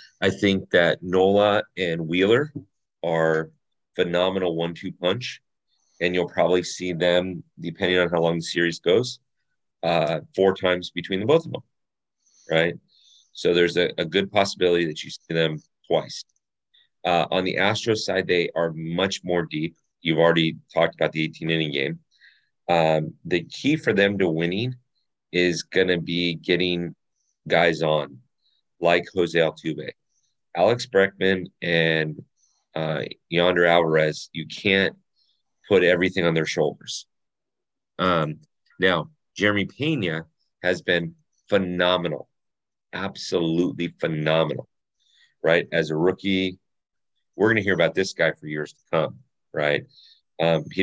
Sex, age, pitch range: male, 30-49, 80-95 Hz